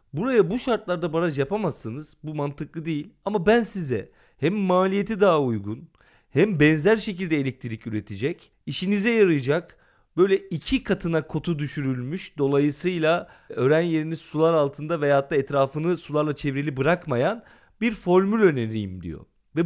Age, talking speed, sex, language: 40-59, 130 wpm, male, Turkish